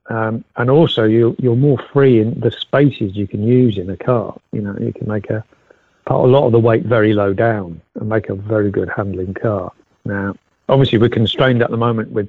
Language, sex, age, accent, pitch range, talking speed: English, male, 50-69, British, 105-125 Hz, 225 wpm